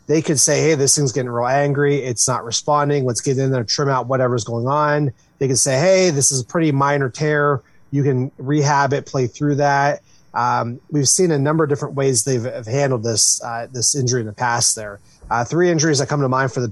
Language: English